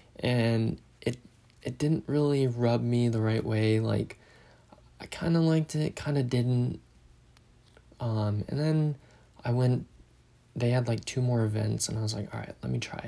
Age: 20-39